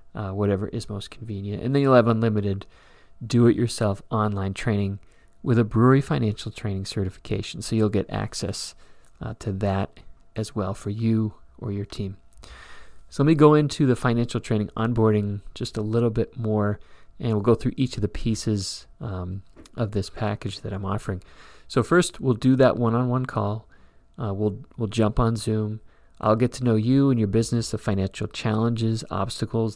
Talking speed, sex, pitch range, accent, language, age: 175 wpm, male, 100-120 Hz, American, English, 30-49